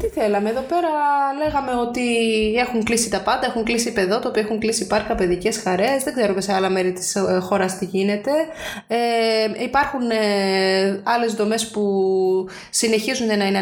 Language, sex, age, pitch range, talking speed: Greek, female, 20-39, 195-230 Hz, 165 wpm